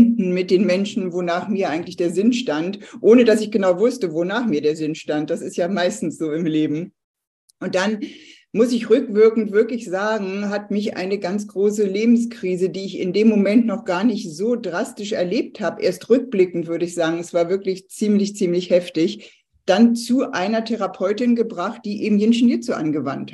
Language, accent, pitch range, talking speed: German, German, 180-220 Hz, 185 wpm